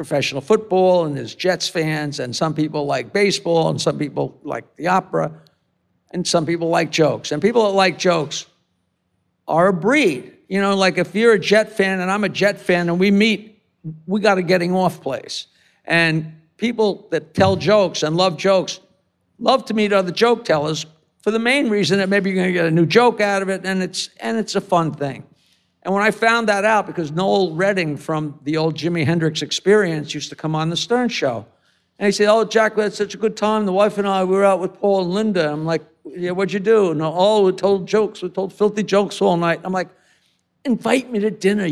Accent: American